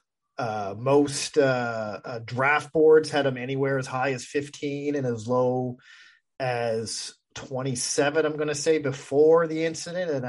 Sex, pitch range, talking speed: male, 120-145 Hz, 150 wpm